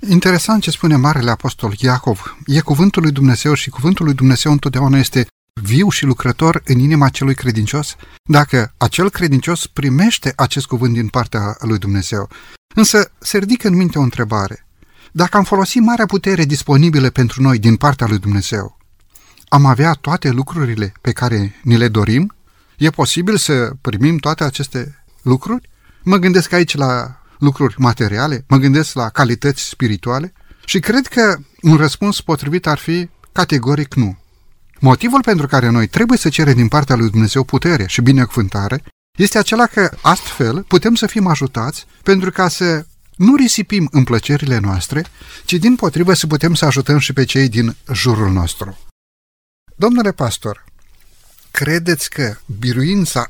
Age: 30-49